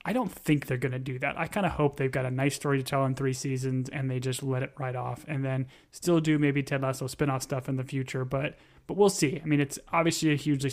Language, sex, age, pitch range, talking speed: English, male, 20-39, 130-145 Hz, 285 wpm